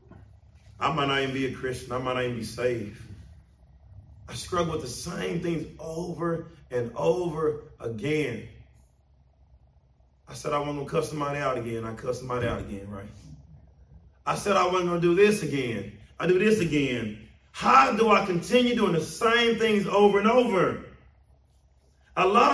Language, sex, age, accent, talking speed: English, male, 30-49, American, 175 wpm